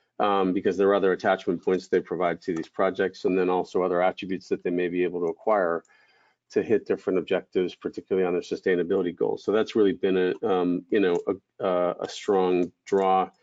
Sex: male